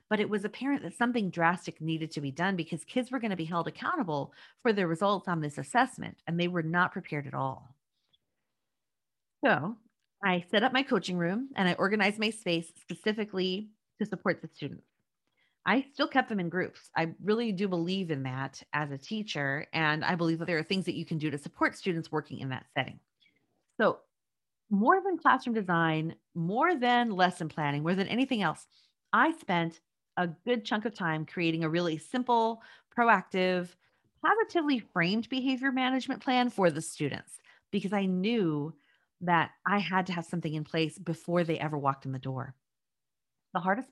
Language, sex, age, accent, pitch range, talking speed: English, female, 40-59, American, 160-220 Hz, 185 wpm